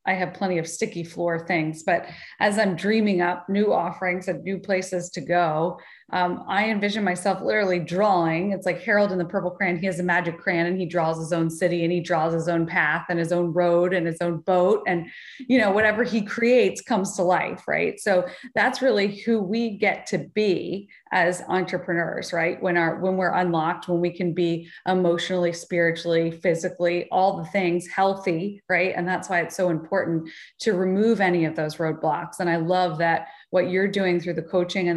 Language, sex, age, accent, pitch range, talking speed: English, female, 30-49, American, 170-190 Hz, 205 wpm